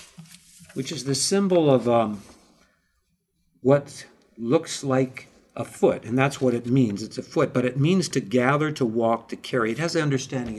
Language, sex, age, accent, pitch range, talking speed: English, male, 60-79, American, 125-165 Hz, 180 wpm